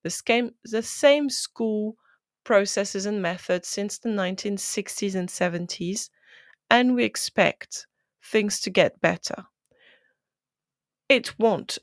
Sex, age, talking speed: female, 30-49, 105 wpm